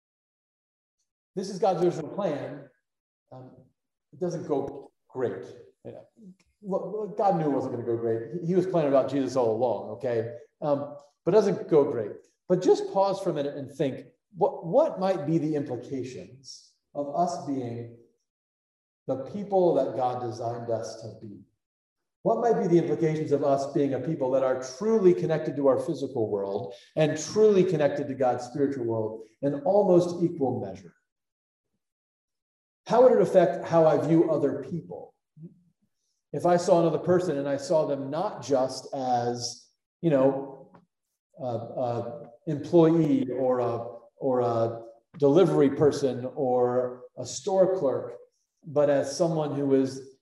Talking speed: 155 wpm